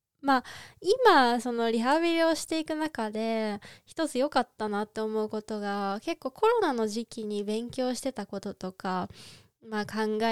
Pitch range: 195-250 Hz